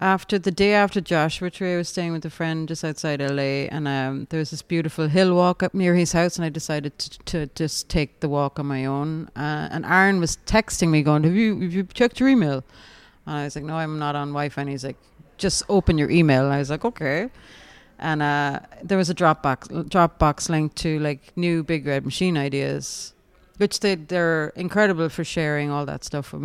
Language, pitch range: English, 140-175 Hz